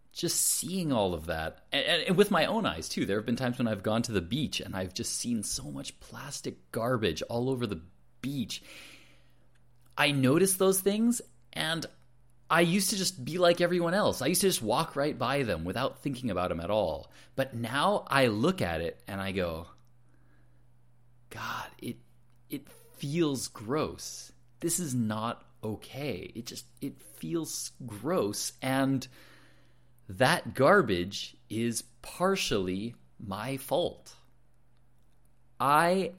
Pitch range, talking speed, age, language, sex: 110-140 Hz, 150 wpm, 30-49, English, male